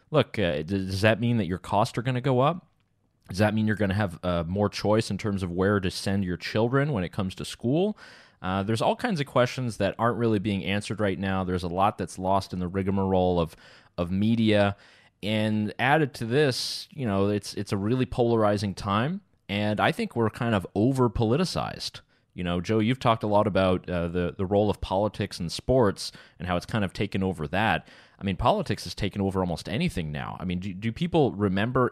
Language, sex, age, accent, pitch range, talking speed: English, male, 30-49, American, 95-120 Hz, 220 wpm